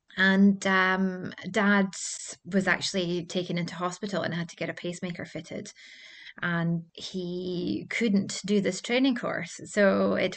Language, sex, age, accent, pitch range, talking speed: English, female, 20-39, British, 170-200 Hz, 140 wpm